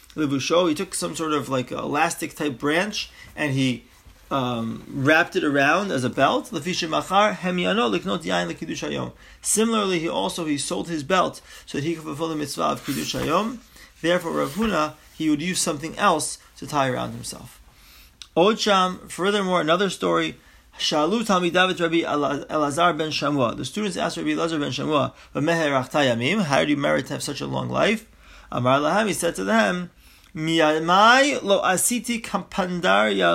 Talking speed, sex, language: 130 wpm, male, English